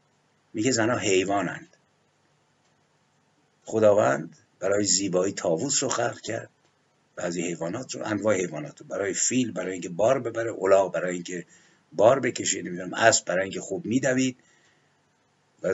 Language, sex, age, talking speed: Persian, male, 50-69, 135 wpm